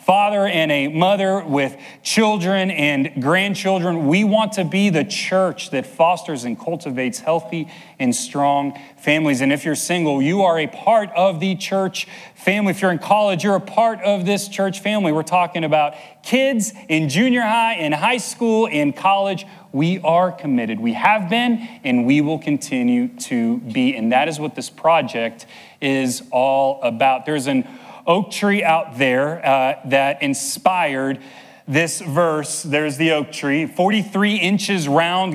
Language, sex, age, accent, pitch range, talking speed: English, male, 30-49, American, 150-205 Hz, 165 wpm